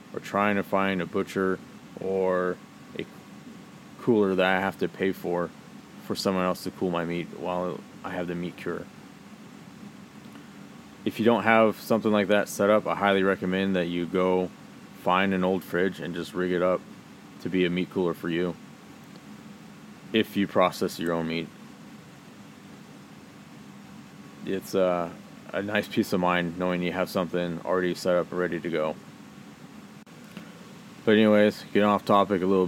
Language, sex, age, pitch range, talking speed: English, male, 20-39, 85-95 Hz, 165 wpm